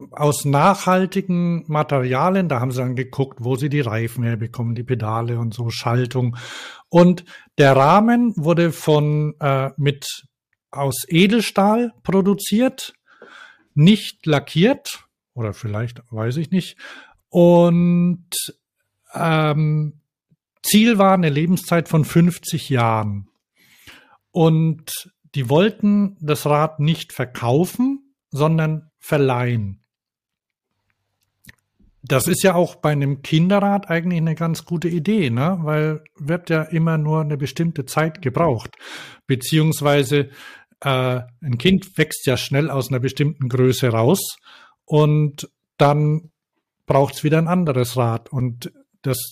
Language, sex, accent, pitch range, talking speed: German, male, German, 135-185 Hz, 120 wpm